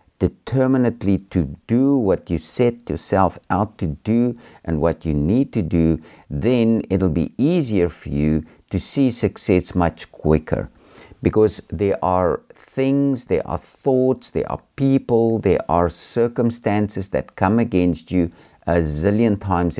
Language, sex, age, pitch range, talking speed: English, male, 50-69, 80-110 Hz, 140 wpm